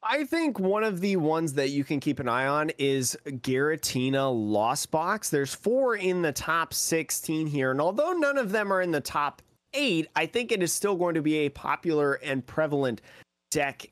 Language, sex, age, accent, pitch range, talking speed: English, male, 30-49, American, 130-180 Hz, 205 wpm